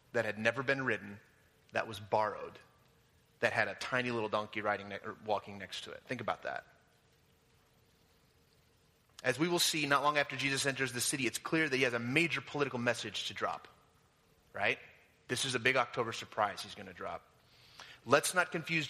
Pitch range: 115-145 Hz